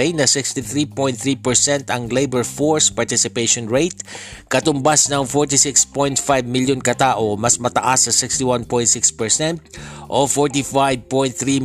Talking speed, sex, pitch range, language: 95 wpm, male, 120-145 Hz, Filipino